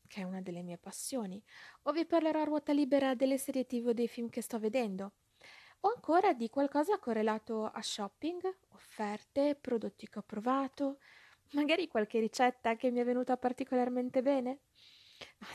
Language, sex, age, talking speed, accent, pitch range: Italian, female, 20-39, 160 wpm, native, 195-265 Hz